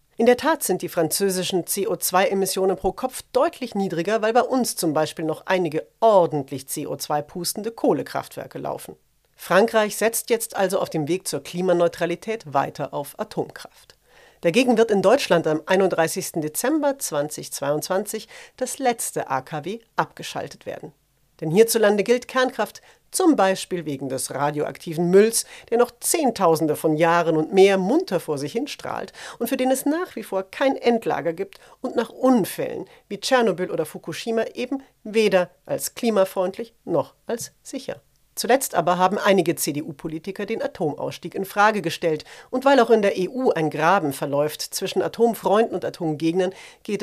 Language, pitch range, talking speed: German, 165-230 Hz, 150 wpm